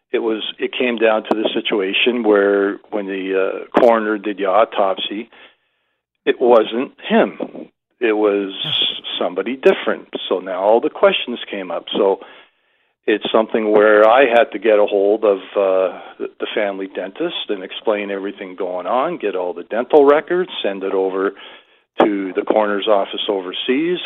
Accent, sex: American, male